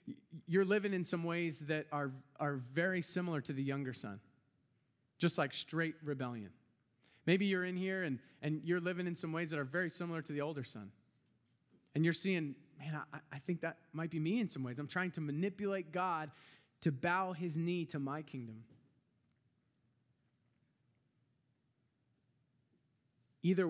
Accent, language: American, English